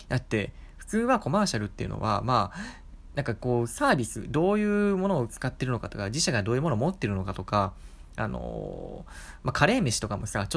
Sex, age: male, 20-39